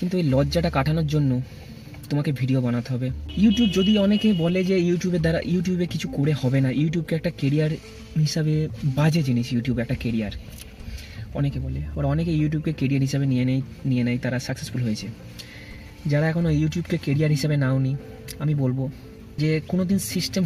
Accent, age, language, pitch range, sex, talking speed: native, 30-49, Bengali, 120-160 Hz, male, 130 wpm